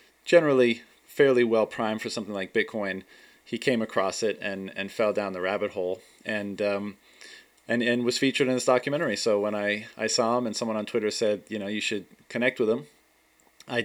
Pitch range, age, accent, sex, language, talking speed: 105-120 Hz, 30-49, American, male, English, 200 wpm